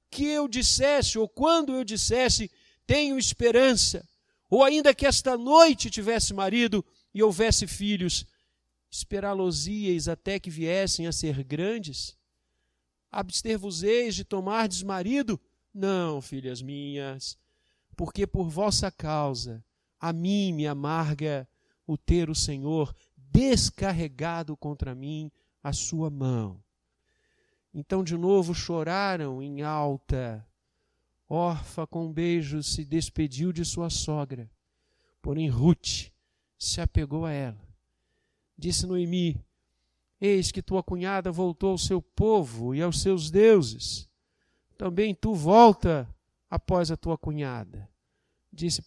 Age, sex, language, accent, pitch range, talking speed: 50-69, male, Portuguese, Brazilian, 135-195 Hz, 115 wpm